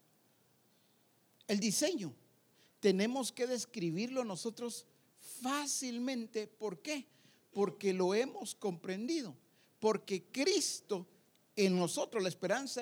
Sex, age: male, 50-69